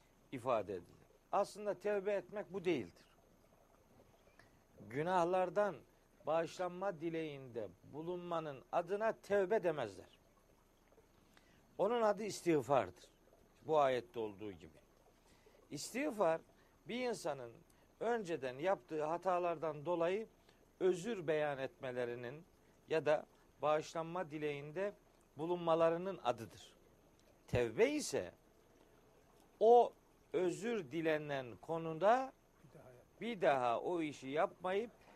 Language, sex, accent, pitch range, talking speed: Turkish, male, native, 150-200 Hz, 80 wpm